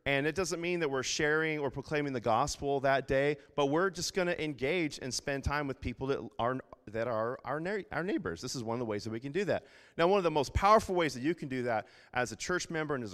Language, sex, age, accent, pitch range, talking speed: English, male, 30-49, American, 125-155 Hz, 280 wpm